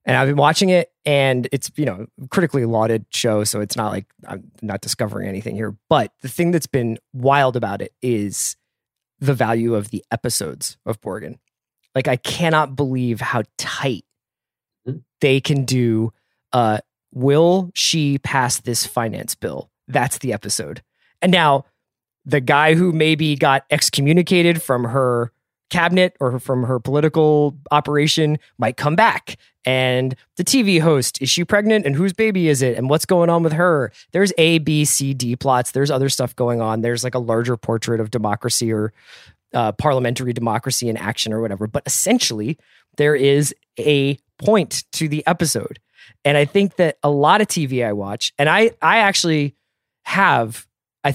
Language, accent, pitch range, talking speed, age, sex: English, American, 120-155 Hz, 170 wpm, 20-39, male